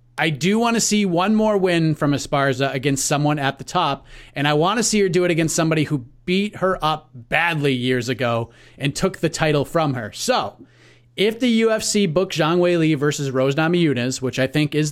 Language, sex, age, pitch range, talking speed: English, male, 30-49, 140-190 Hz, 215 wpm